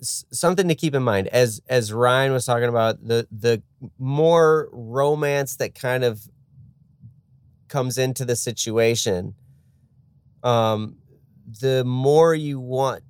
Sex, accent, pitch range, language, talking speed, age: male, American, 120-140 Hz, English, 125 wpm, 30-49